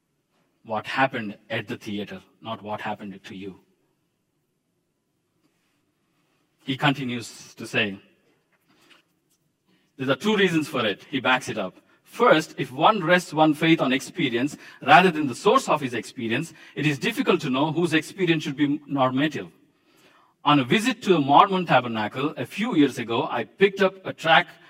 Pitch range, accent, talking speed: 110-155 Hz, Indian, 160 wpm